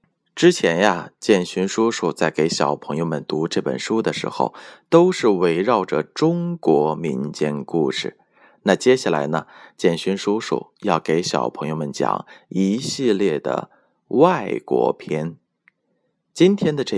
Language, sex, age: Chinese, male, 20-39